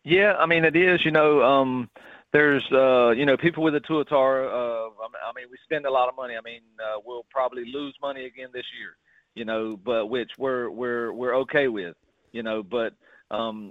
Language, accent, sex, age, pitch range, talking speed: English, American, male, 40-59, 110-135 Hz, 205 wpm